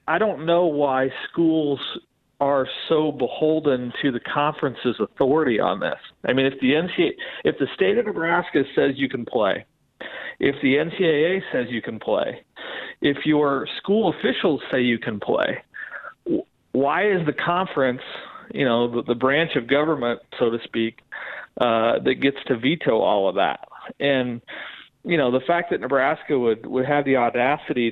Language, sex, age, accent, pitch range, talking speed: English, male, 40-59, American, 120-150 Hz, 165 wpm